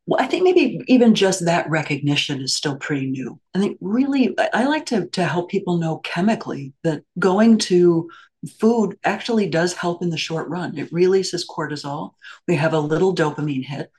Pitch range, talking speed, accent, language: 145-180 Hz, 180 wpm, American, English